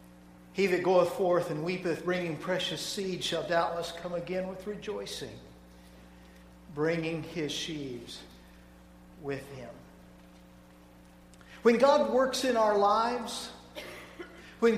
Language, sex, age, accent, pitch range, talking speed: English, male, 50-69, American, 165-255 Hz, 110 wpm